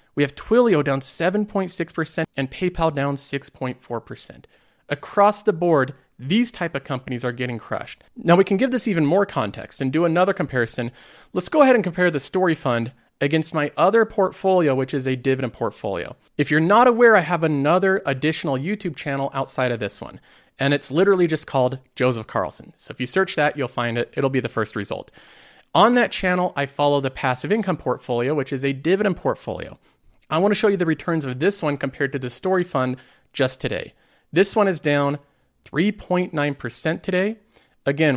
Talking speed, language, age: 190 wpm, English, 40-59